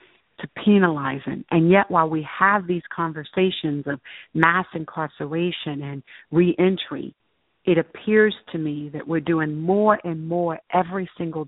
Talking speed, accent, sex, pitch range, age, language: 135 wpm, American, female, 155-180 Hz, 50-69, English